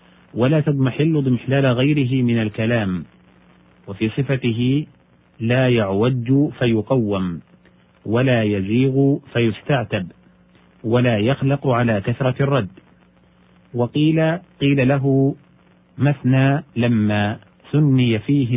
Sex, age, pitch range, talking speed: male, 40-59, 105-130 Hz, 85 wpm